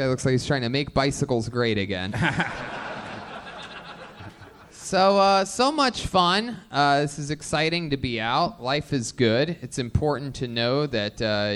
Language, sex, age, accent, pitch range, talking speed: English, male, 20-39, American, 120-180 Hz, 160 wpm